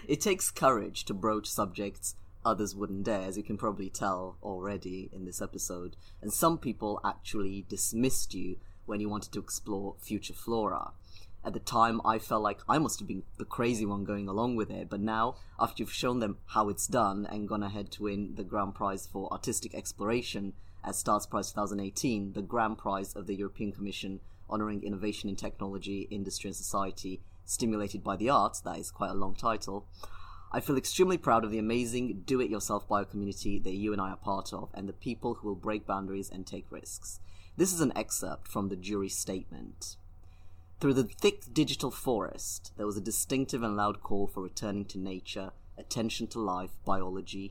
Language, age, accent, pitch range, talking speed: English, 30-49, British, 95-105 Hz, 190 wpm